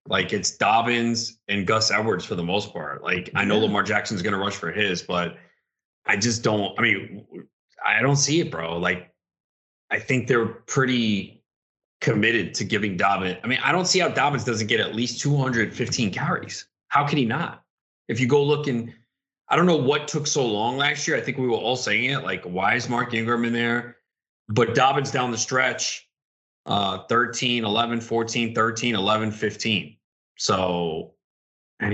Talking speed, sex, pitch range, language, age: 185 wpm, male, 105-125 Hz, English, 20-39